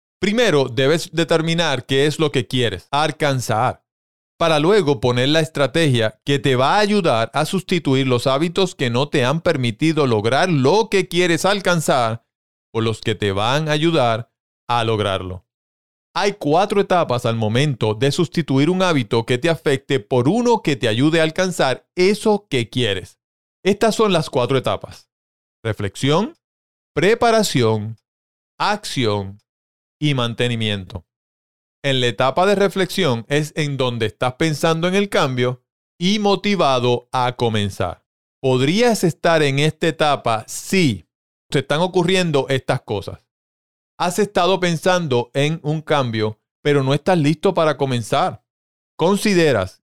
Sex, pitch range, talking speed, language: male, 115-175 Hz, 140 wpm, Spanish